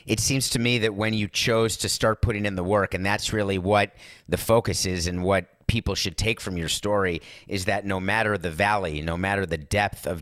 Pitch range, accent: 100-125 Hz, American